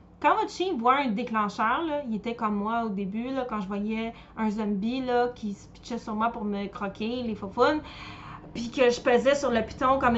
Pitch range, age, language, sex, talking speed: 210-255 Hz, 20-39, French, female, 225 wpm